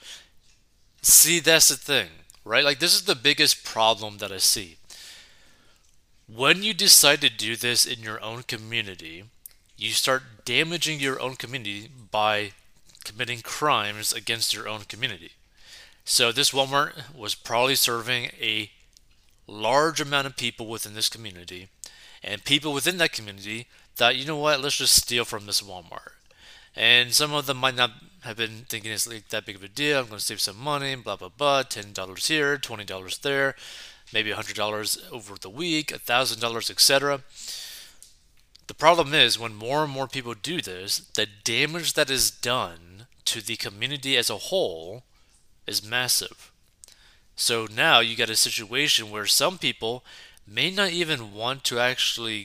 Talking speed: 165 wpm